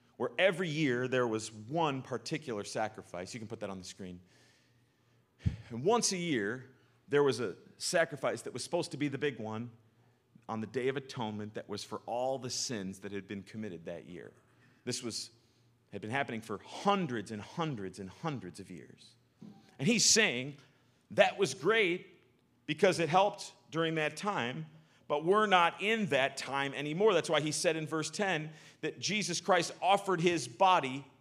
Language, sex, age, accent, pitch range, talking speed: English, male, 40-59, American, 115-165 Hz, 180 wpm